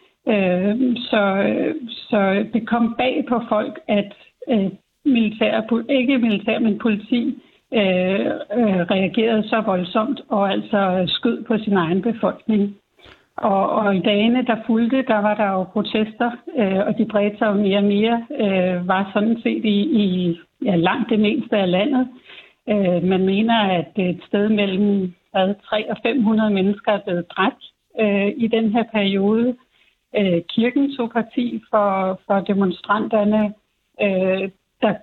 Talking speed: 145 wpm